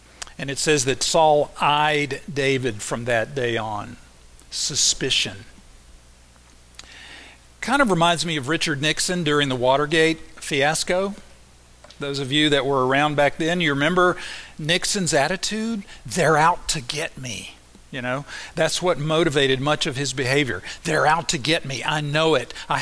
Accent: American